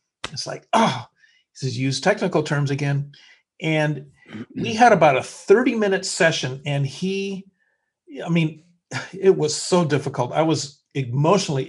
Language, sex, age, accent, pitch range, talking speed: English, male, 50-69, American, 135-165 Hz, 140 wpm